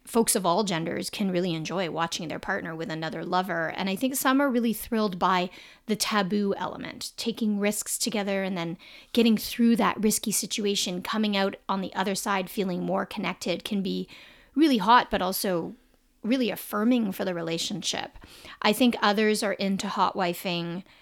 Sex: female